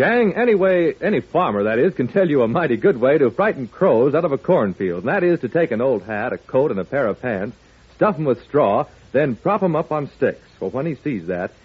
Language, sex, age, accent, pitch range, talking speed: English, male, 60-79, American, 110-180 Hz, 265 wpm